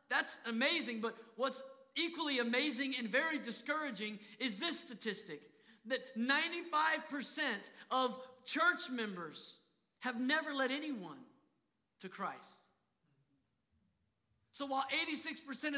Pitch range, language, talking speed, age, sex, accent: 160-270 Hz, English, 100 wpm, 40-59, male, American